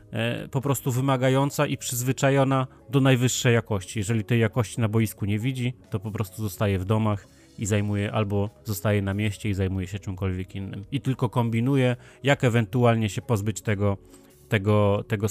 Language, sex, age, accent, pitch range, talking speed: Polish, male, 30-49, native, 105-125 Hz, 160 wpm